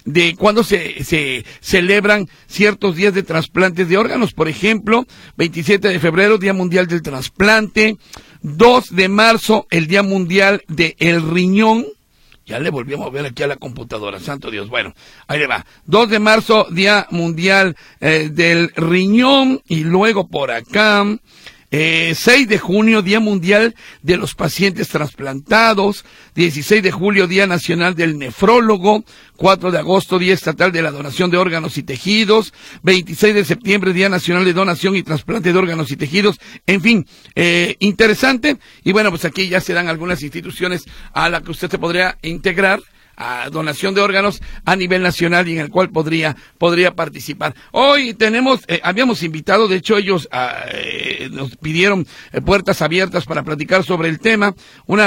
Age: 50-69